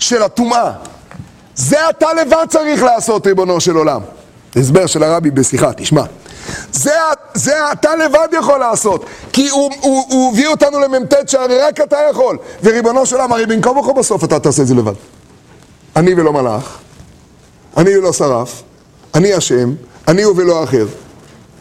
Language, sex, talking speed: Hebrew, male, 155 wpm